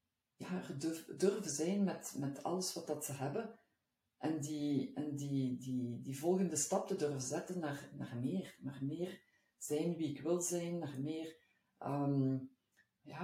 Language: Dutch